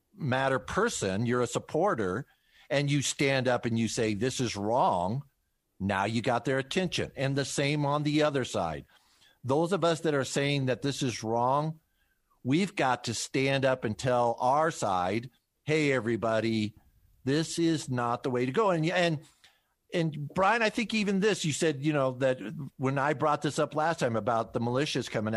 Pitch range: 120-155 Hz